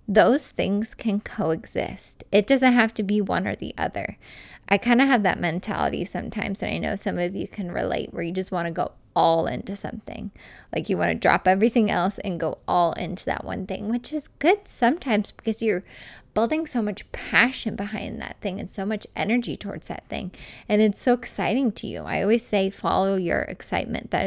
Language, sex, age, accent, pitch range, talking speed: English, female, 20-39, American, 180-230 Hz, 210 wpm